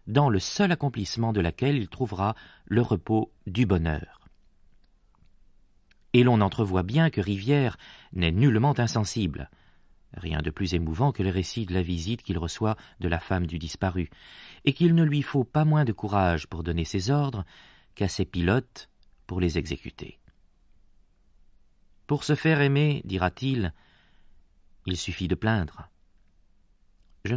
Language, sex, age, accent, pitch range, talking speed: French, male, 40-59, French, 85-125 Hz, 150 wpm